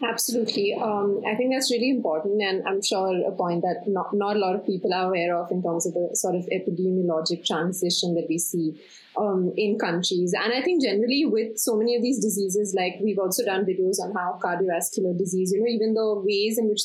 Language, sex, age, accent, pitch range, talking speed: English, female, 30-49, Indian, 185-240 Hz, 220 wpm